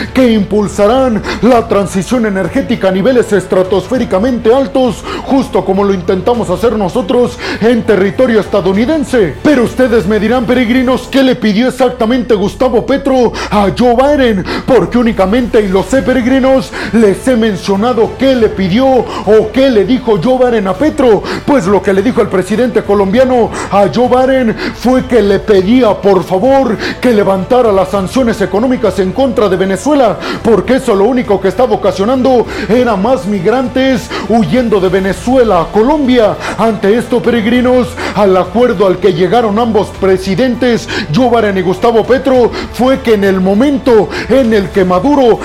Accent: Mexican